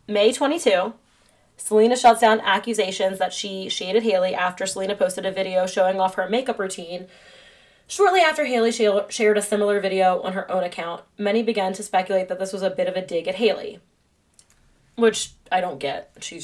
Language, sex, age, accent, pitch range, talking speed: English, female, 20-39, American, 185-225 Hz, 185 wpm